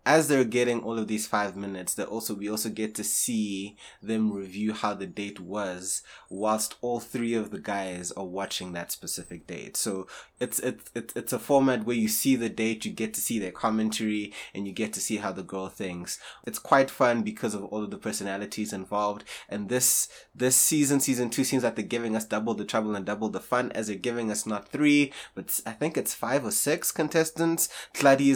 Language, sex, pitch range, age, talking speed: English, male, 100-115 Hz, 20-39, 215 wpm